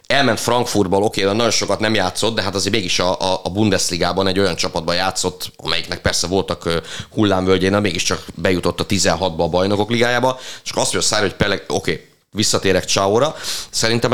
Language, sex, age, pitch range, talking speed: Hungarian, male, 30-49, 85-110 Hz, 160 wpm